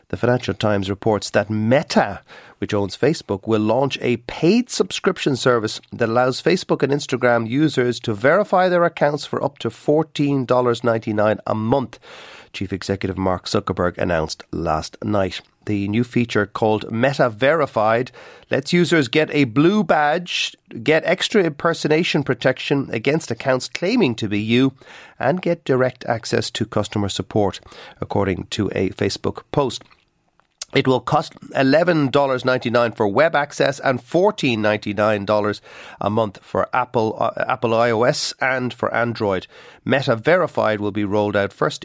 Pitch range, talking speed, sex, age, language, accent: 105-140 Hz, 140 wpm, male, 40-59, English, Irish